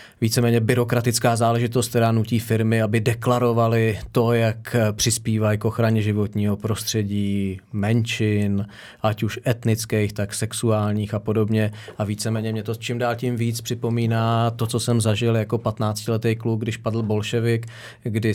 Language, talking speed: Czech, 140 wpm